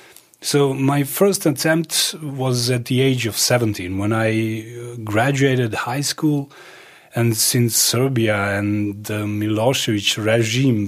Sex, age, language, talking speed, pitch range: male, 30-49, German, 120 wpm, 100-125 Hz